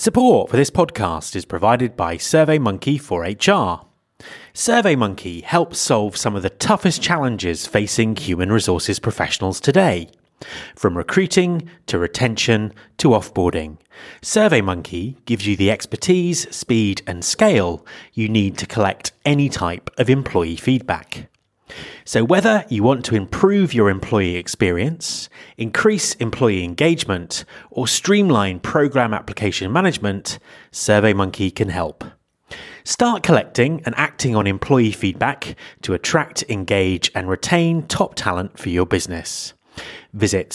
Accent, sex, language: British, male, English